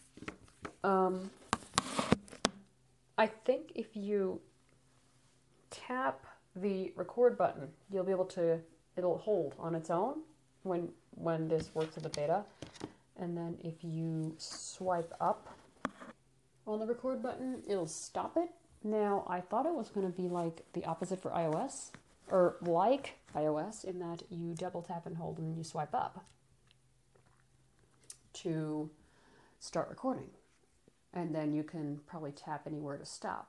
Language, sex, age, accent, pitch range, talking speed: English, female, 30-49, American, 155-190 Hz, 140 wpm